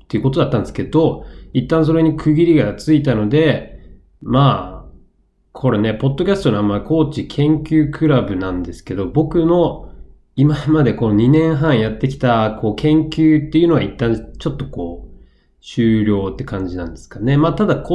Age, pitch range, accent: 20-39, 100-145 Hz, native